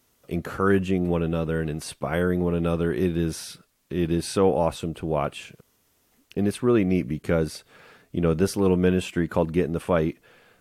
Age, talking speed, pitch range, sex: 30-49, 170 wpm, 80-90 Hz, male